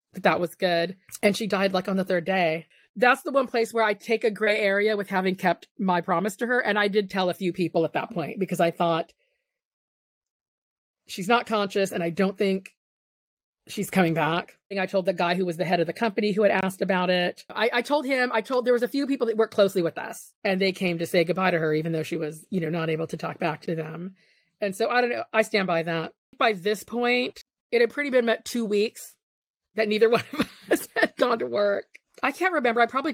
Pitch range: 185-235 Hz